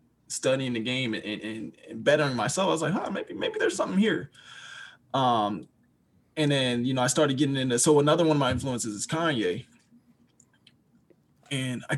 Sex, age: male, 20-39